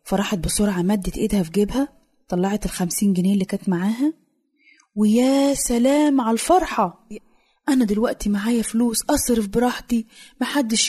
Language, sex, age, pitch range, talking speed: Arabic, female, 20-39, 195-255 Hz, 125 wpm